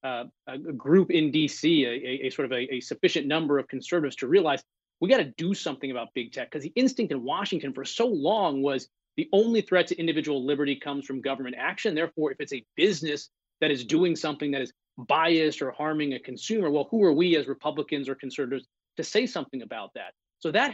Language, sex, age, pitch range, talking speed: English, male, 30-49, 140-185 Hz, 220 wpm